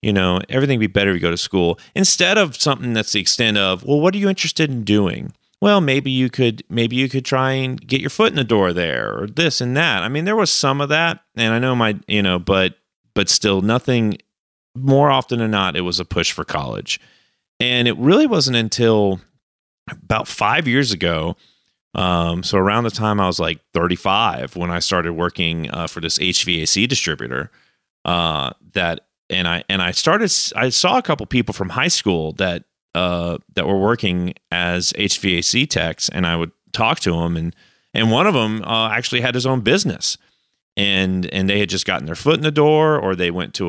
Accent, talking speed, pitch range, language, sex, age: American, 210 wpm, 90-130 Hz, English, male, 30-49